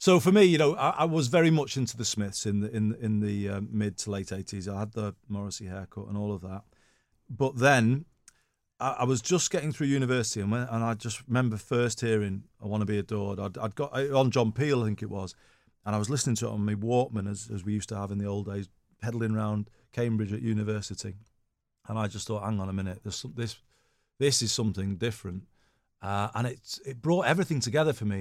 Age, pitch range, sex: 40-59, 100-125 Hz, male